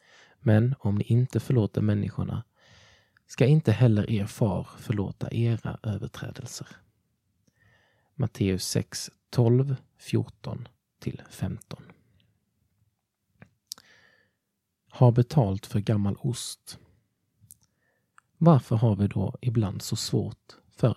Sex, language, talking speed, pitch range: male, Swedish, 85 wpm, 105-130 Hz